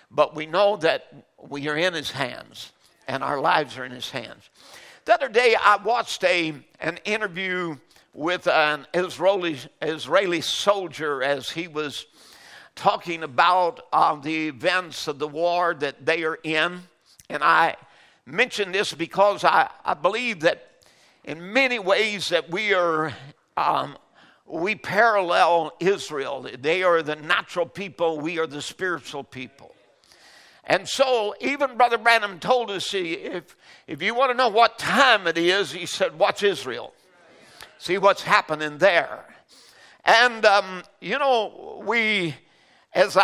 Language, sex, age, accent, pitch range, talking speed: English, male, 60-79, American, 155-205 Hz, 145 wpm